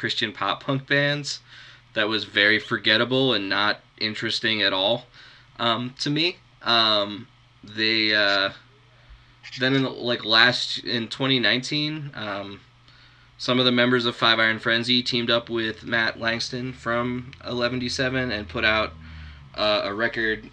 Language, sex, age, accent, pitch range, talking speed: English, male, 20-39, American, 105-125 Hz, 140 wpm